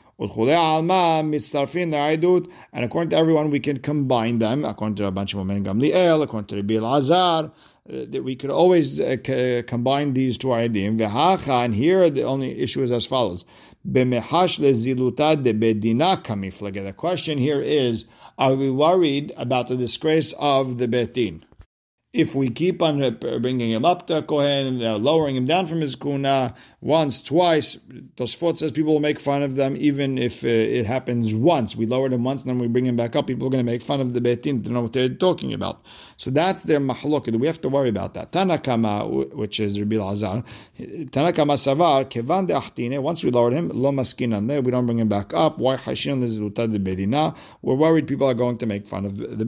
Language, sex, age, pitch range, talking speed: English, male, 50-69, 115-150 Hz, 185 wpm